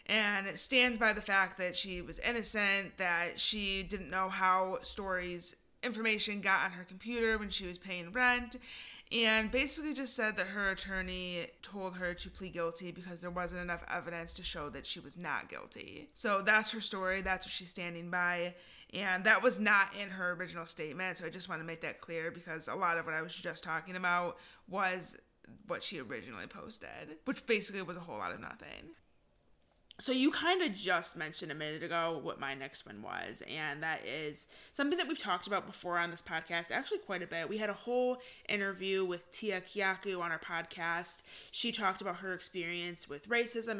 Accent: American